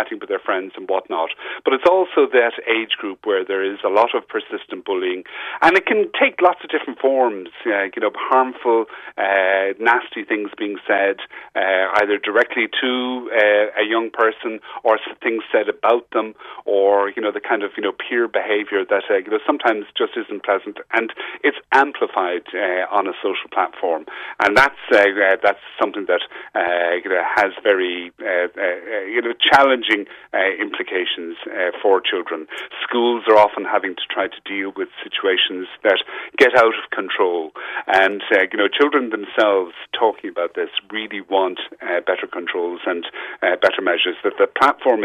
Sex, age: male, 40-59